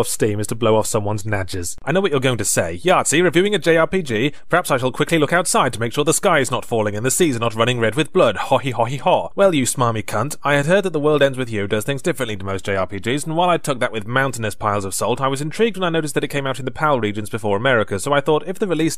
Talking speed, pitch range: 305 wpm, 110-145 Hz